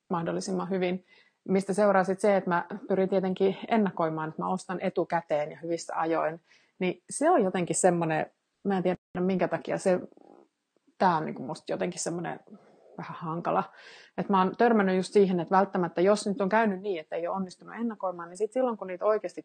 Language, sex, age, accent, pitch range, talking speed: Finnish, female, 30-49, native, 170-195 Hz, 185 wpm